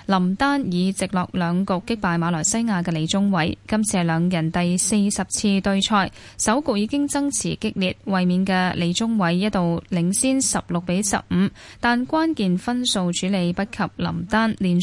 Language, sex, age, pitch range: Chinese, female, 10-29, 180-230 Hz